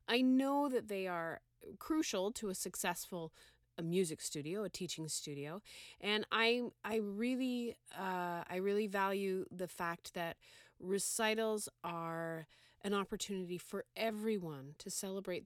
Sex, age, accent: female, 30-49, American